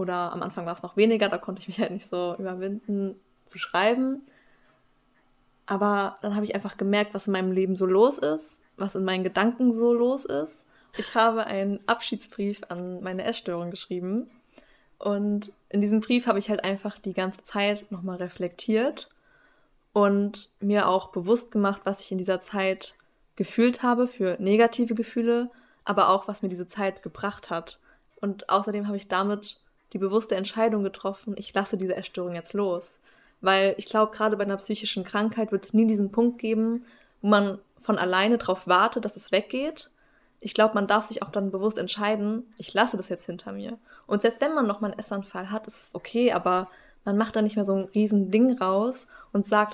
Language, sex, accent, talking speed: German, female, German, 190 wpm